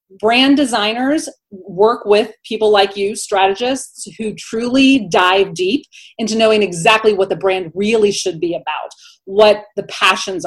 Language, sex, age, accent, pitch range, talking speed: English, female, 30-49, American, 195-260 Hz, 145 wpm